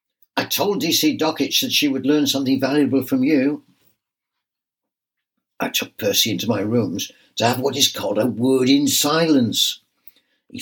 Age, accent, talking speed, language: 60-79, British, 155 wpm, English